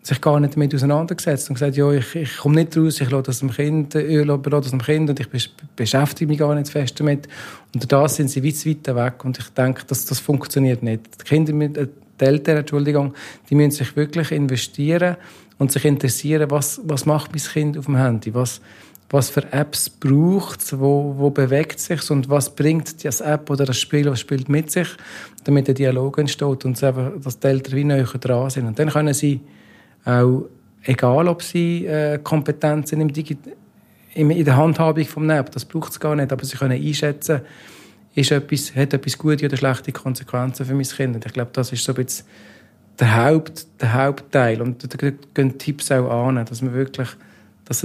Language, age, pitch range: German, 40-59, 130-150 Hz